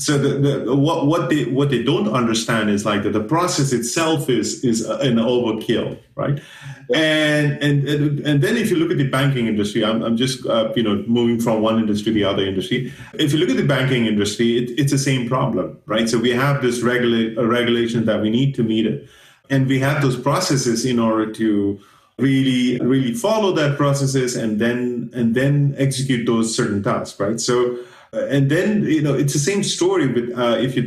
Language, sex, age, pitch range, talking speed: English, male, 30-49, 115-145 Hz, 205 wpm